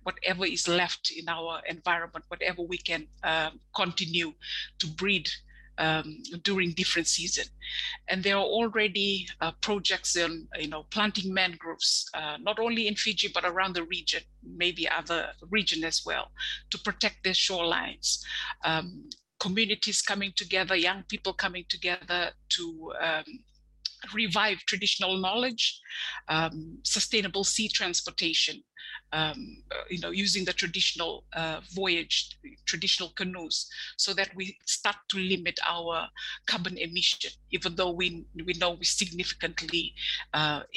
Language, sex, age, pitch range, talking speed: English, female, 50-69, 170-205 Hz, 130 wpm